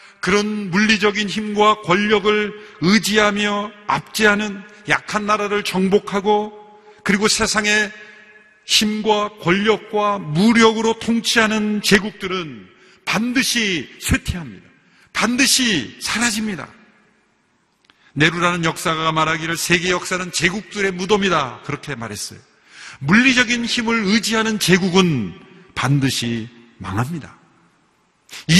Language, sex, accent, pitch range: Korean, male, native, 180-215 Hz